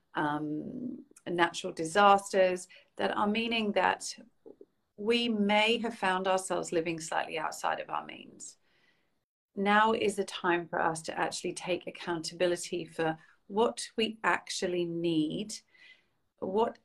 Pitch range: 165-205 Hz